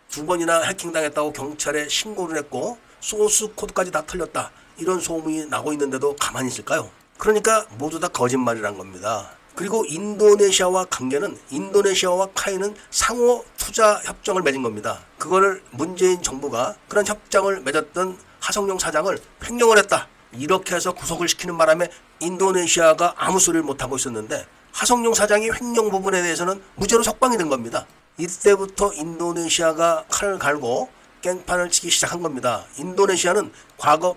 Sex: male